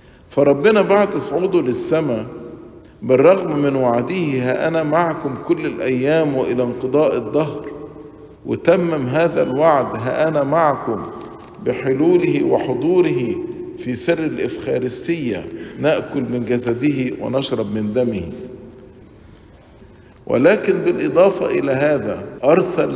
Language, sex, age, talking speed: English, male, 50-69, 90 wpm